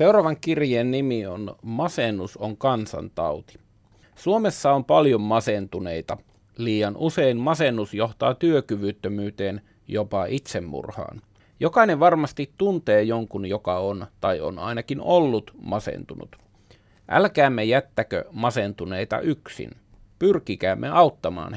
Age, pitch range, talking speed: 30-49, 105-145 Hz, 95 wpm